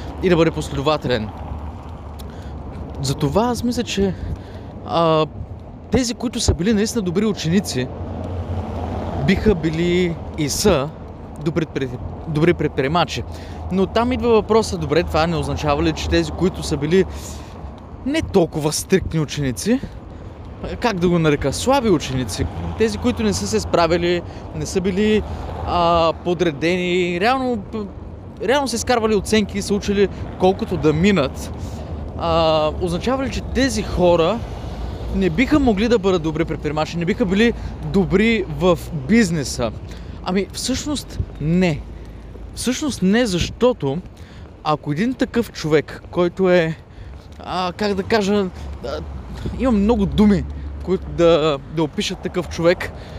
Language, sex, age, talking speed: Bulgarian, male, 20-39, 125 wpm